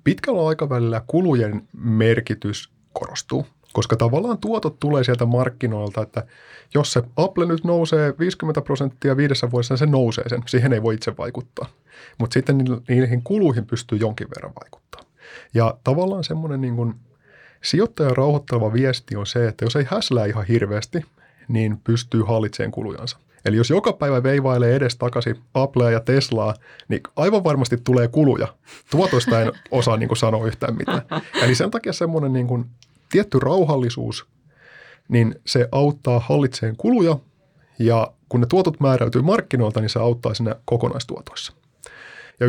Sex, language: male, Finnish